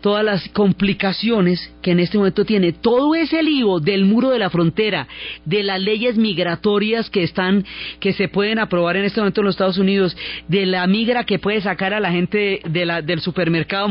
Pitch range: 175-210 Hz